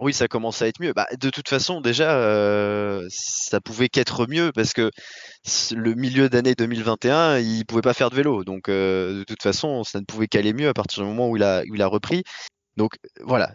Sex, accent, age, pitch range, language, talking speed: male, French, 20-39, 100-125 Hz, French, 225 wpm